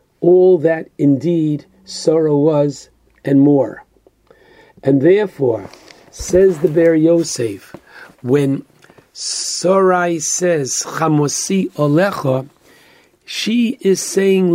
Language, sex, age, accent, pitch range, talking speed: English, male, 50-69, American, 145-185 Hz, 85 wpm